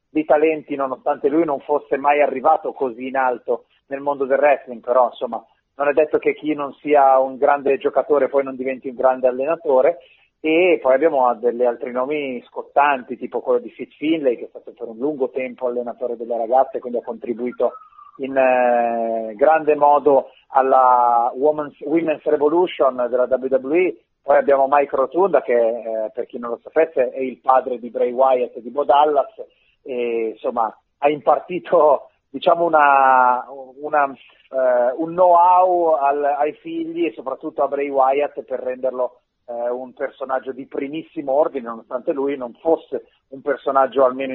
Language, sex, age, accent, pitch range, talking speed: Italian, male, 40-59, native, 125-155 Hz, 165 wpm